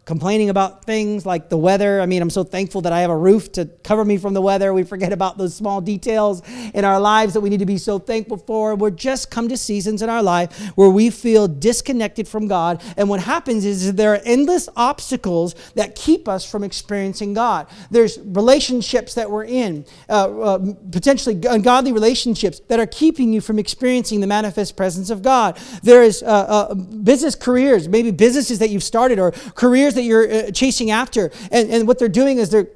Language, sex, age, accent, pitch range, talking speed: English, male, 40-59, American, 205-275 Hz, 205 wpm